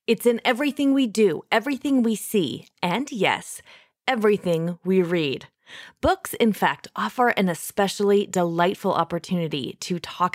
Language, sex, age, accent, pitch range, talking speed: English, female, 30-49, American, 180-250 Hz, 135 wpm